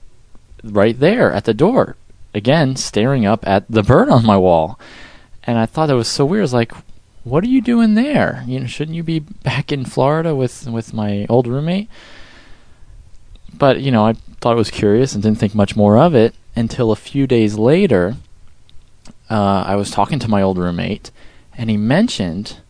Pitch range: 100-130 Hz